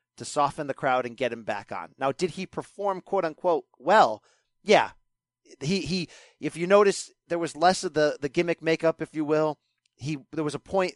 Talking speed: 210 wpm